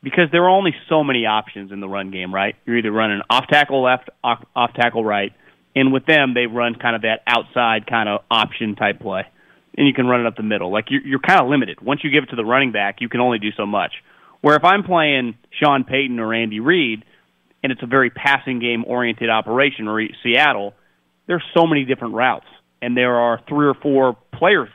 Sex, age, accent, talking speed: male, 30-49, American, 225 wpm